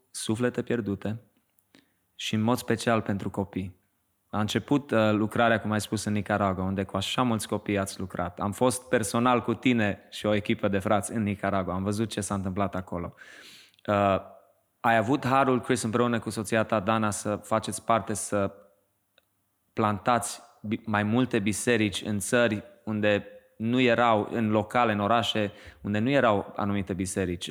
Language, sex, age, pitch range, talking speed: Romanian, male, 20-39, 100-120 Hz, 160 wpm